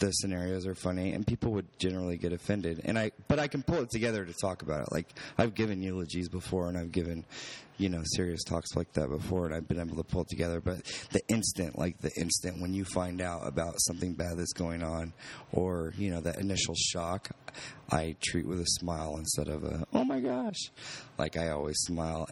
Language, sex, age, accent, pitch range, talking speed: English, male, 20-39, American, 85-105 Hz, 220 wpm